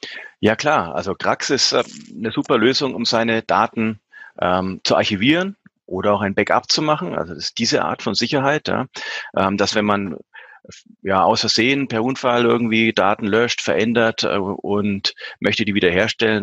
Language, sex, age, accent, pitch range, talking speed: German, male, 30-49, German, 95-115 Hz, 170 wpm